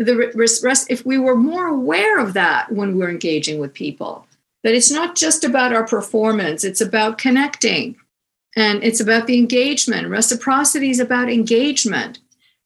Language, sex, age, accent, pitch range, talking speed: English, female, 50-69, American, 180-245 Hz, 145 wpm